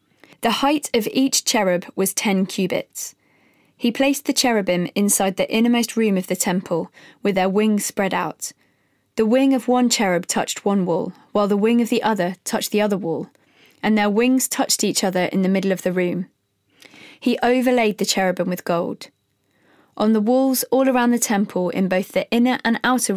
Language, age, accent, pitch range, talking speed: English, 20-39, British, 190-245 Hz, 190 wpm